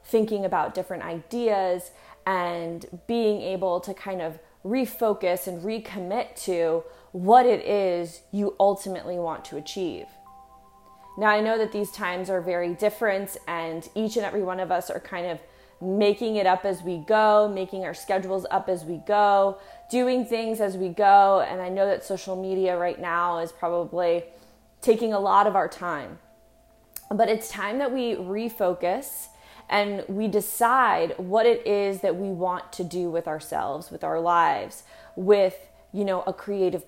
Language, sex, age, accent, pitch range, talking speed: English, female, 20-39, American, 175-210 Hz, 165 wpm